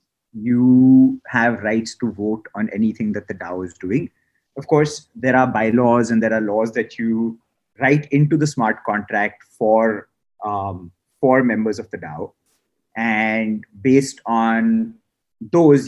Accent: Indian